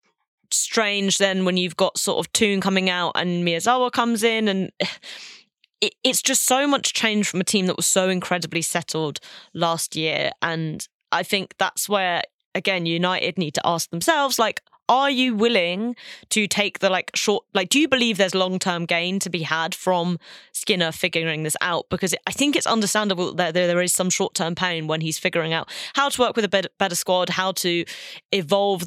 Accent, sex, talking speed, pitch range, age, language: British, female, 185 wpm, 170-210 Hz, 20-39, English